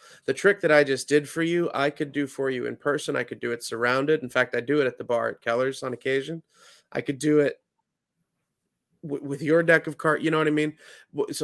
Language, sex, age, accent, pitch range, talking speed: English, male, 30-49, American, 120-150 Hz, 245 wpm